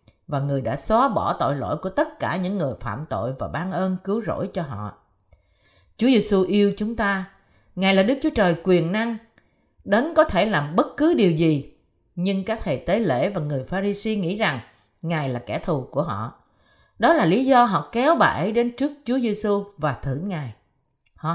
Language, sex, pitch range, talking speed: Vietnamese, female, 155-235 Hz, 200 wpm